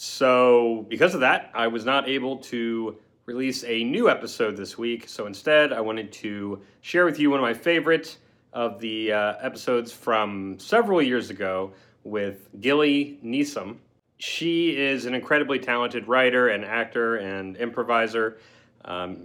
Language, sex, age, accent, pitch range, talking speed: English, male, 30-49, American, 110-135 Hz, 155 wpm